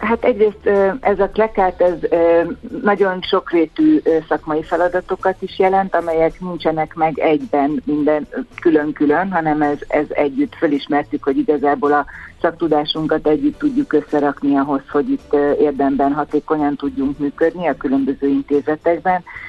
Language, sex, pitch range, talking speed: Hungarian, female, 145-165 Hz, 125 wpm